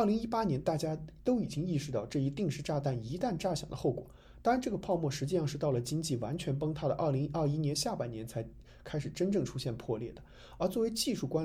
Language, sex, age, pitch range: Chinese, male, 20-39, 135-190 Hz